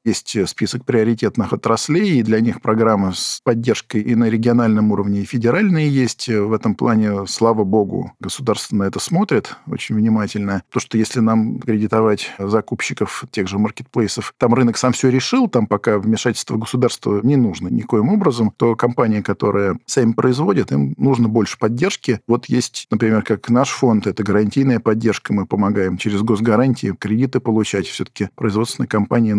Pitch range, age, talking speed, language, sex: 105-120 Hz, 50-69, 155 wpm, Russian, male